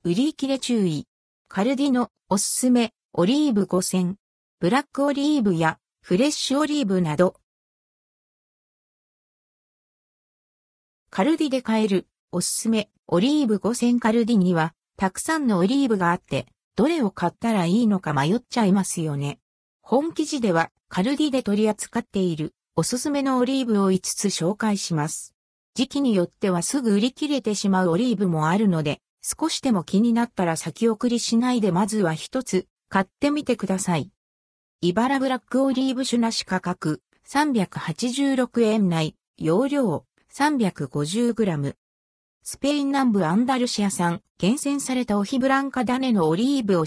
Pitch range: 175-260 Hz